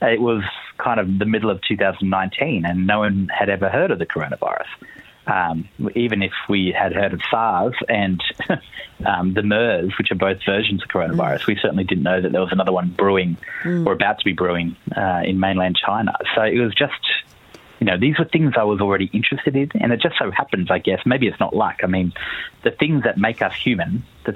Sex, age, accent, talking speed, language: male, 30-49, Australian, 215 wpm, English